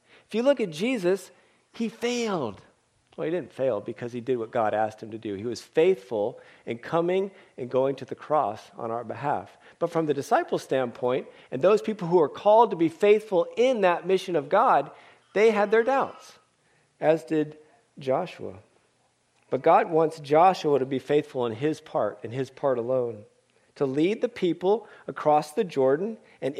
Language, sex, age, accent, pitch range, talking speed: English, male, 40-59, American, 145-225 Hz, 185 wpm